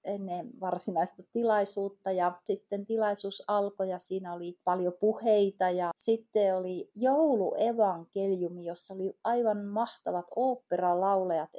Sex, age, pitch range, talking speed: female, 30-49, 180-210 Hz, 105 wpm